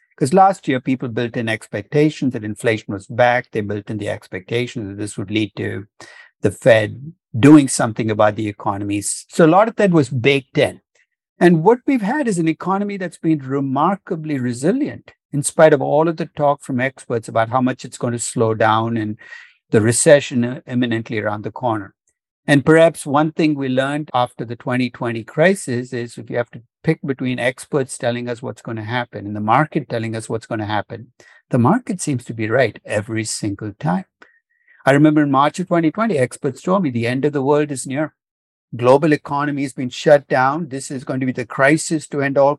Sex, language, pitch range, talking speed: male, English, 120-155 Hz, 205 wpm